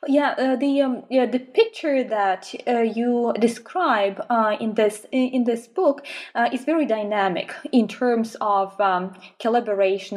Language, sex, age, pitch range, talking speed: English, female, 20-39, 195-255 Hz, 155 wpm